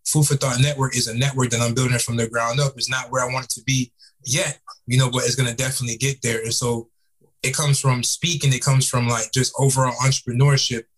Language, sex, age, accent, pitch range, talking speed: English, male, 20-39, American, 120-140 Hz, 245 wpm